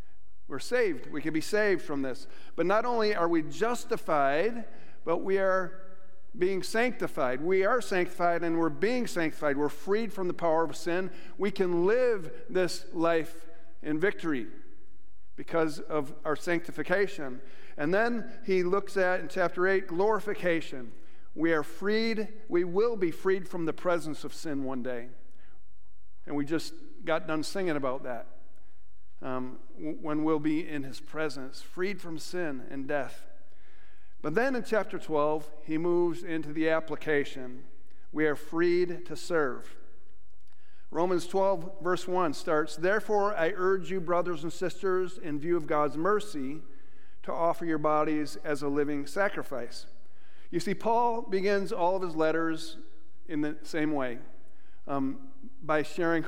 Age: 50-69